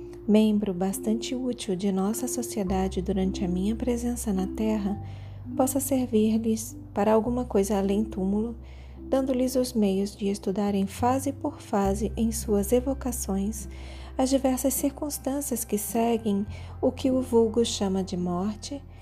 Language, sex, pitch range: Portuguese, female, 180-225 Hz